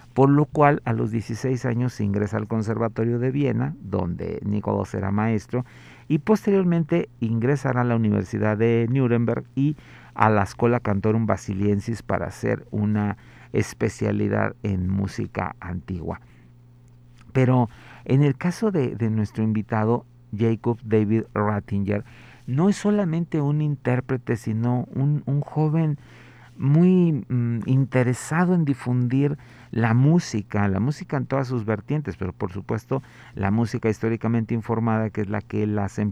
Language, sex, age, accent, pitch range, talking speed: Spanish, male, 50-69, Mexican, 110-135 Hz, 140 wpm